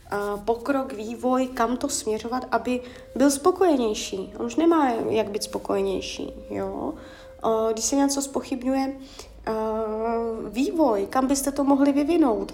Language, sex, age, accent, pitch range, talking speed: Czech, female, 30-49, native, 215-280 Hz, 130 wpm